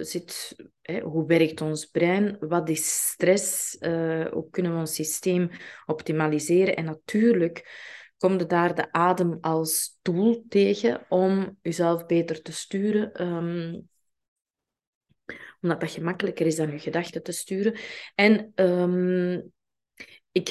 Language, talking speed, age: Dutch, 125 wpm, 20-39